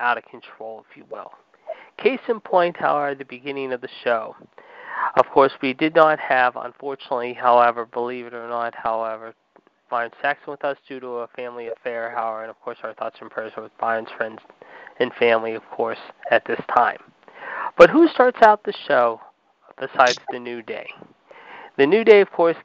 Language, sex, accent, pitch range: English, male, American, 120-180 Hz